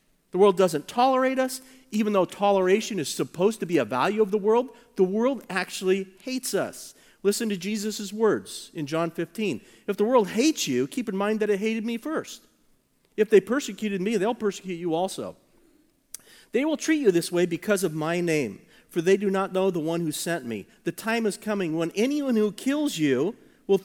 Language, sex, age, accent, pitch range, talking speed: English, male, 40-59, American, 180-225 Hz, 200 wpm